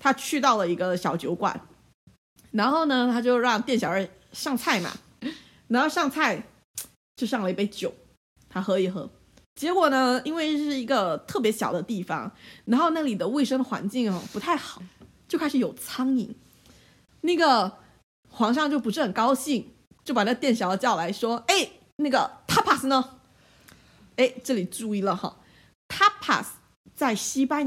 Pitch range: 185-260 Hz